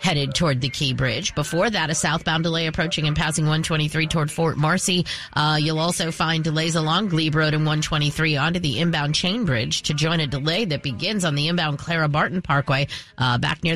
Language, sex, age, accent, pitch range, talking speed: English, female, 40-59, American, 145-180 Hz, 205 wpm